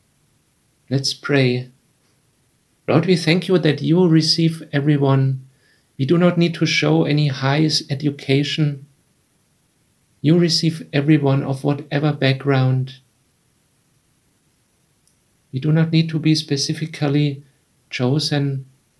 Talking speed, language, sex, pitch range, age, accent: 105 wpm, English, male, 135-155 Hz, 50-69, German